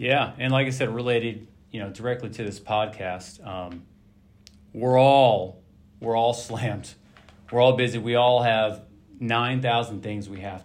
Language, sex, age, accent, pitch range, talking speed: English, male, 40-59, American, 105-135 Hz, 160 wpm